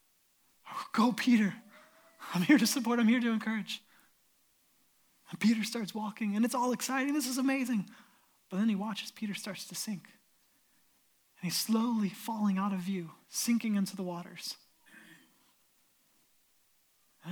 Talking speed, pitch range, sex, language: 140 wpm, 205-280 Hz, male, English